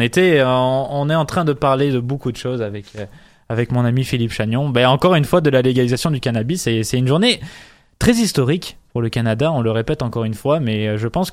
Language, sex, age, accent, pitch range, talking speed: French, male, 20-39, French, 125-170 Hz, 235 wpm